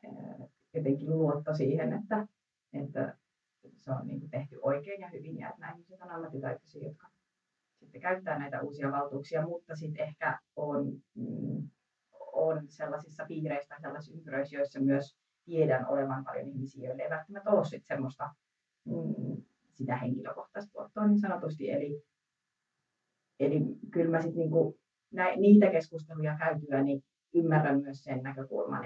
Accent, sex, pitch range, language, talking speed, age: native, female, 135-165 Hz, Finnish, 130 wpm, 30-49